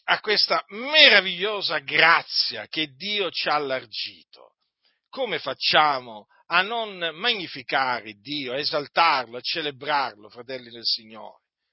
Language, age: Italian, 40-59